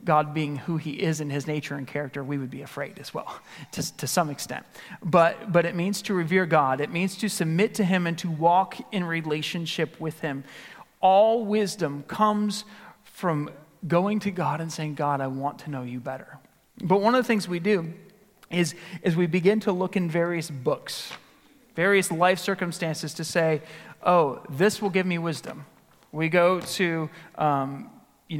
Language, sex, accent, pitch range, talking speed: English, male, American, 150-190 Hz, 185 wpm